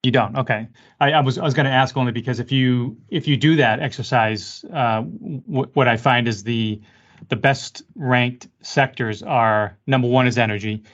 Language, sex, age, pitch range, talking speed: English, male, 30-49, 115-135 Hz, 195 wpm